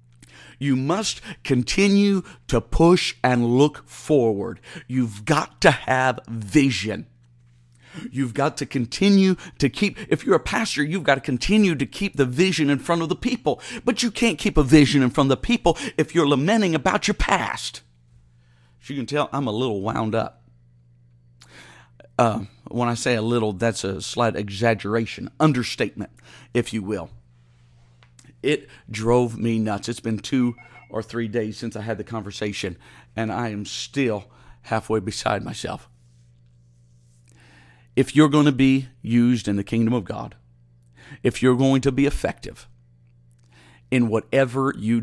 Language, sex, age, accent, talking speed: English, male, 50-69, American, 155 wpm